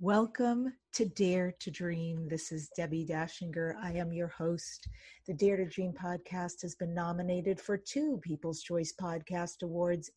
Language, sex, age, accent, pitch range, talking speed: English, female, 50-69, American, 160-200 Hz, 160 wpm